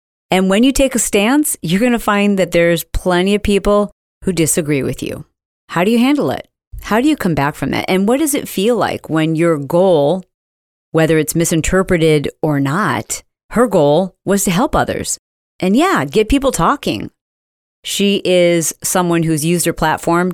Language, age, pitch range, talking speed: English, 40-59, 160-205 Hz, 185 wpm